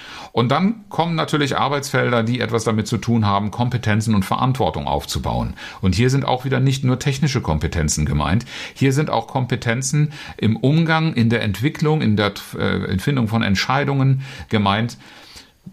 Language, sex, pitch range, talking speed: German, male, 100-135 Hz, 155 wpm